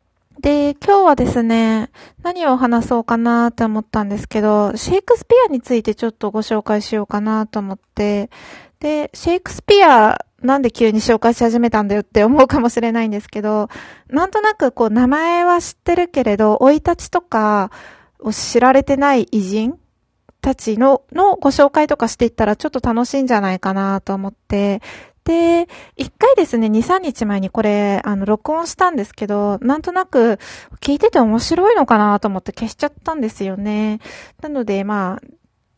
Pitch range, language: 210-285 Hz, Japanese